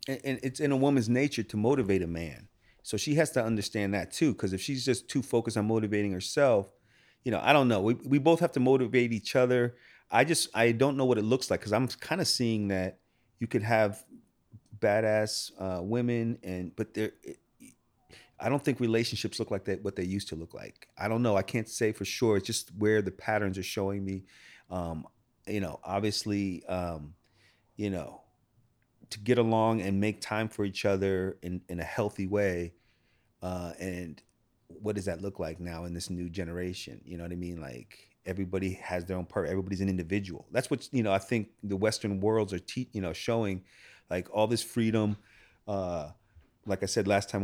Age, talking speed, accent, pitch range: 40-59, 205 wpm, American, 95-115 Hz